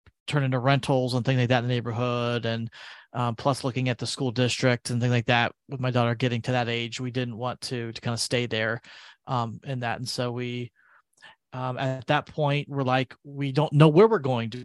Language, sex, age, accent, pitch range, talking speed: English, male, 30-49, American, 125-140 Hz, 235 wpm